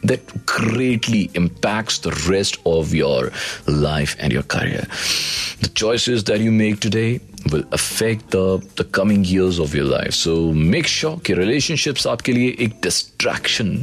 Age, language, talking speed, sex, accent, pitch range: 40-59, Hindi, 150 wpm, male, native, 95-150 Hz